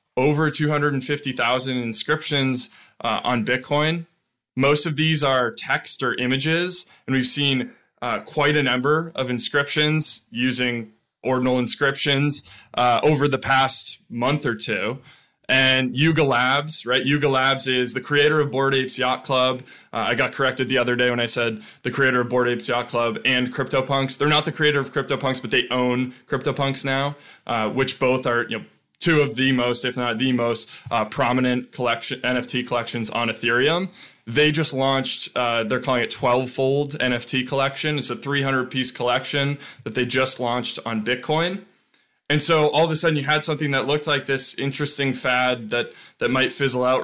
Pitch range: 125-145 Hz